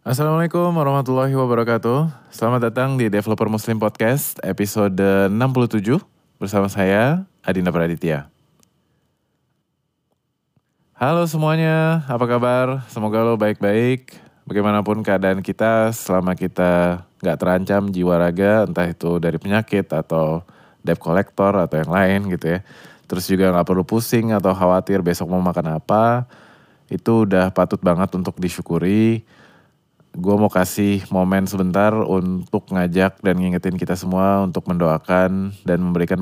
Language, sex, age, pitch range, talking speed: Indonesian, male, 20-39, 90-115 Hz, 125 wpm